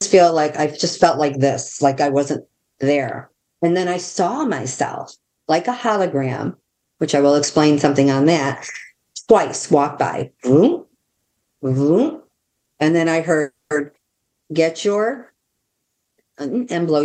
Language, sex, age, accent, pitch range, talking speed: English, female, 50-69, American, 145-180 Hz, 130 wpm